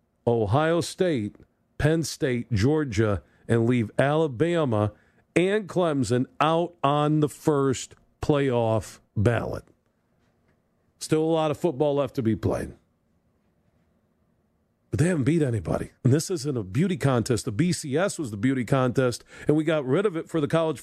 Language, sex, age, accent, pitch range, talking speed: English, male, 50-69, American, 115-160 Hz, 145 wpm